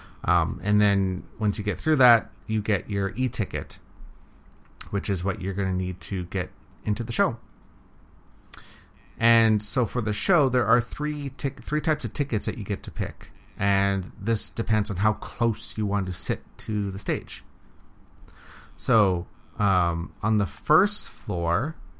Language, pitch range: English, 95-115 Hz